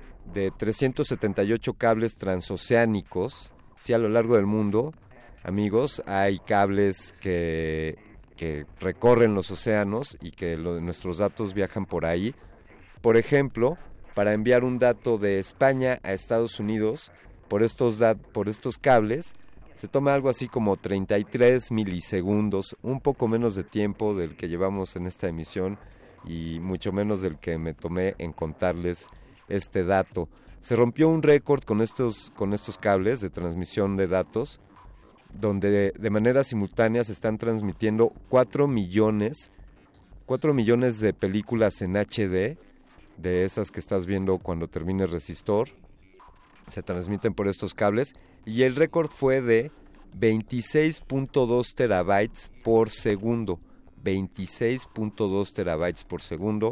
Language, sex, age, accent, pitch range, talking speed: Spanish, male, 40-59, Mexican, 95-115 Hz, 130 wpm